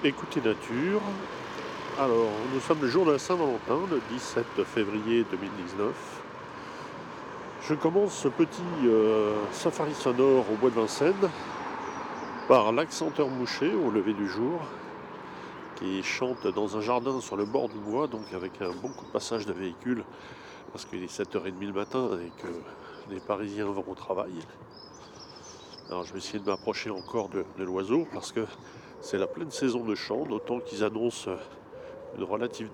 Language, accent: French, French